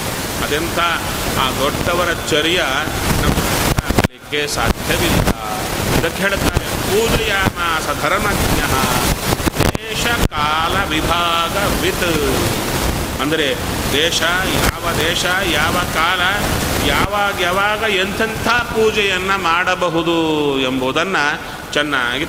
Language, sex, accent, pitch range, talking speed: Kannada, male, native, 130-165 Hz, 70 wpm